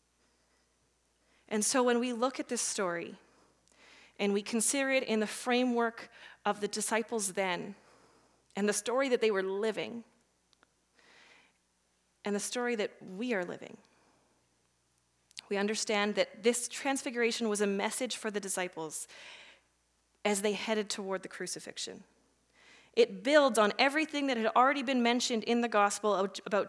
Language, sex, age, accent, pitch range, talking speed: English, female, 30-49, American, 180-235 Hz, 140 wpm